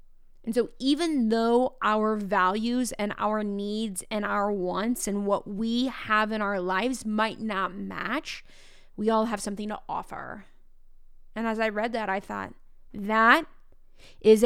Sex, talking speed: female, 155 wpm